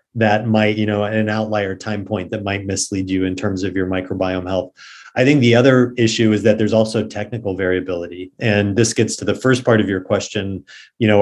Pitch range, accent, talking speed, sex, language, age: 100-115 Hz, American, 220 wpm, male, English, 30-49